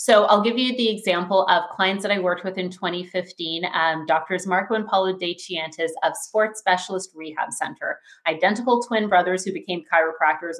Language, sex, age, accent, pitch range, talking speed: English, female, 30-49, American, 175-220 Hz, 180 wpm